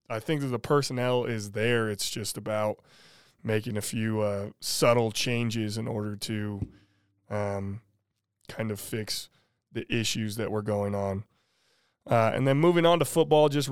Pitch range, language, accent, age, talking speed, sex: 110-130 Hz, English, American, 20-39, 160 wpm, male